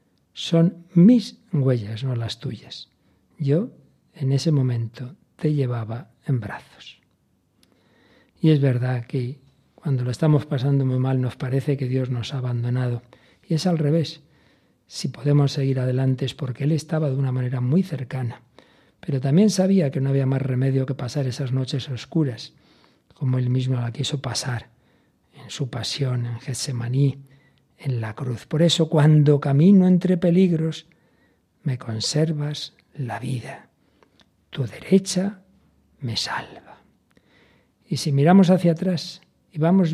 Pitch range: 130-160 Hz